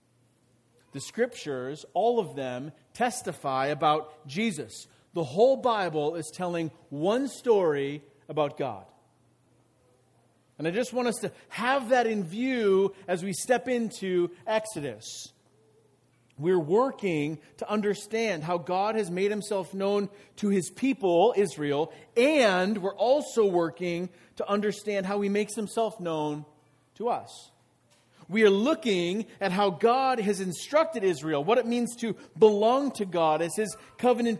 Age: 40-59